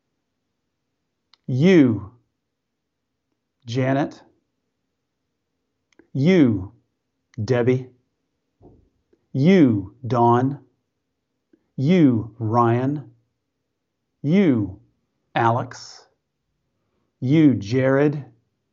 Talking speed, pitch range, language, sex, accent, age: 40 wpm, 115-140 Hz, English, male, American, 50-69